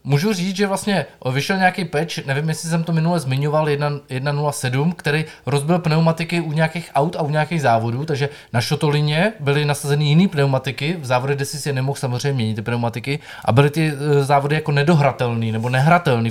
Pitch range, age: 130-170 Hz, 20-39